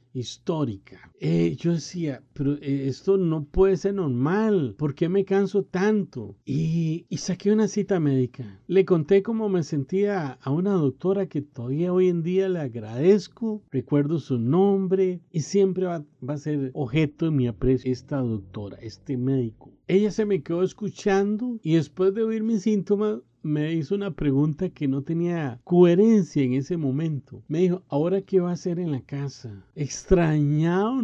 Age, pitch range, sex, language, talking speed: 40-59, 140-195 Hz, male, Spanish, 170 wpm